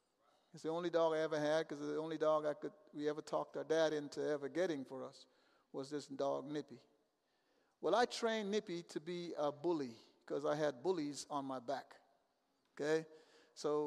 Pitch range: 150-200 Hz